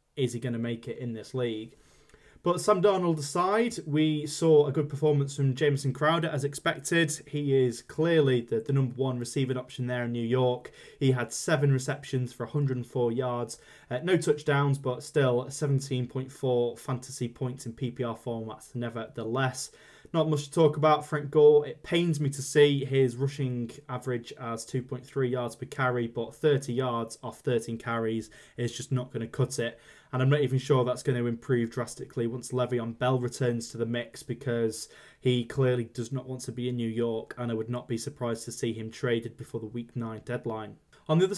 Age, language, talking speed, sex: 20-39, English, 195 wpm, male